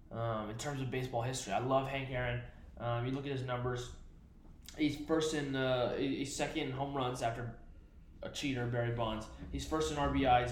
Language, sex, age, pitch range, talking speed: English, male, 20-39, 120-155 Hz, 195 wpm